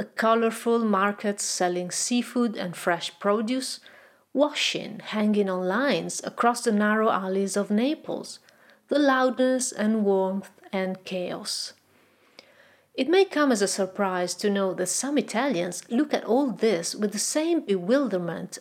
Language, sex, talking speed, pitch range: Italian, female, 140 wpm, 190-255 Hz